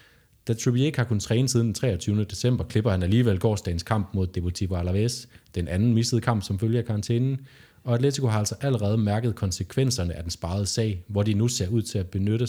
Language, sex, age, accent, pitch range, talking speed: Danish, male, 30-49, native, 95-115 Hz, 210 wpm